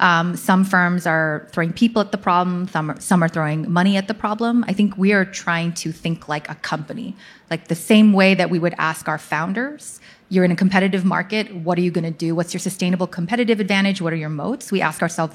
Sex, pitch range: female, 165-200 Hz